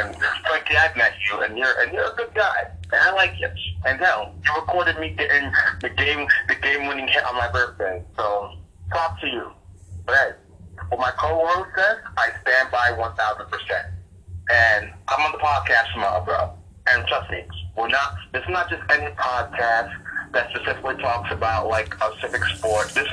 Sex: male